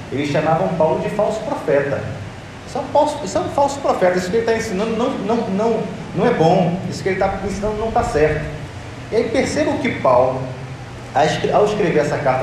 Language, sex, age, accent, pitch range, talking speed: Portuguese, male, 40-59, Brazilian, 130-205 Hz, 210 wpm